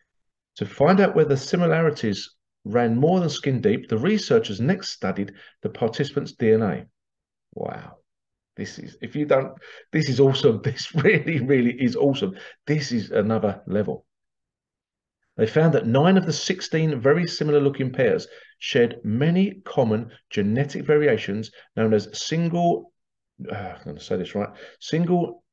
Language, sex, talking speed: English, male, 145 wpm